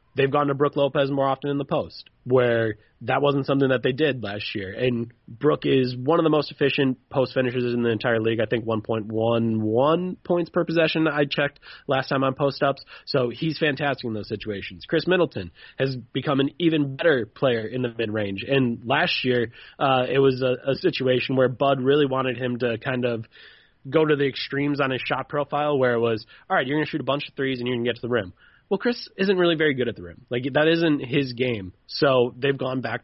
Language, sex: English, male